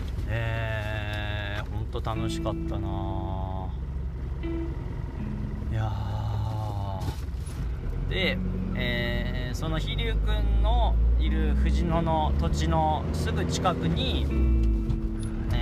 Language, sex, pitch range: Japanese, male, 65-80 Hz